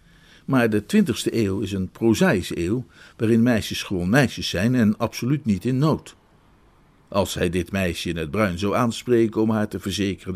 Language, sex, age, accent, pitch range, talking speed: Dutch, male, 50-69, Dutch, 95-120 Hz, 180 wpm